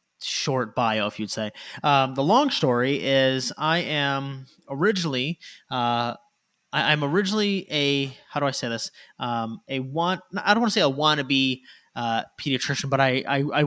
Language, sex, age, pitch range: English, male, 20-39, 125-160 Hz